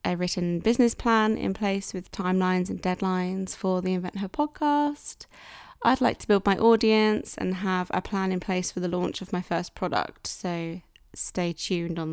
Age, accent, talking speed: 20-39, British, 190 wpm